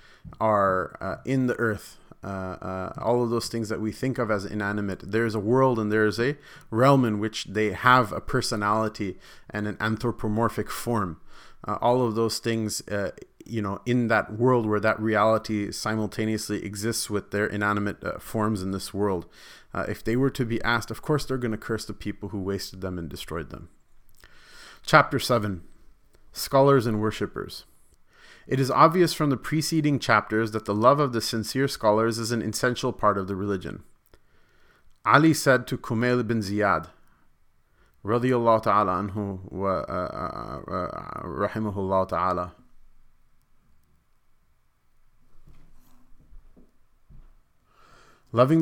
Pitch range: 105-125 Hz